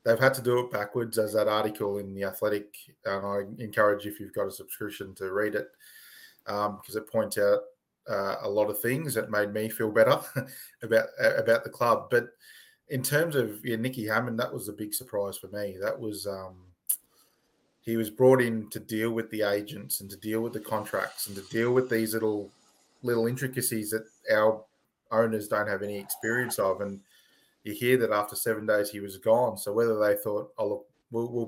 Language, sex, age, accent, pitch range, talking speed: English, male, 20-39, Australian, 105-120 Hz, 205 wpm